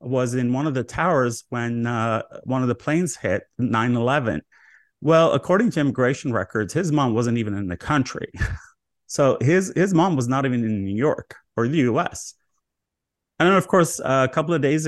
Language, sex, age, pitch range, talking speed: English, male, 30-49, 110-140 Hz, 195 wpm